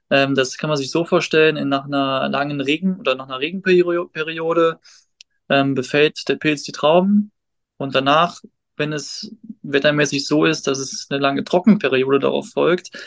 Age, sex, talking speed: 20-39, male, 160 wpm